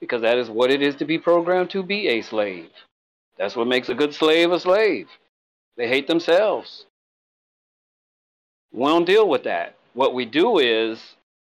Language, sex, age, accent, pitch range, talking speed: English, male, 40-59, American, 125-170 Hz, 165 wpm